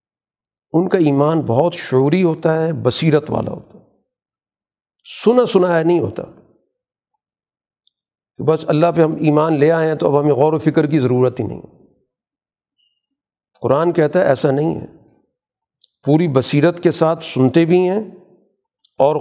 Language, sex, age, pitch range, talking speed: Urdu, male, 50-69, 140-180 Hz, 155 wpm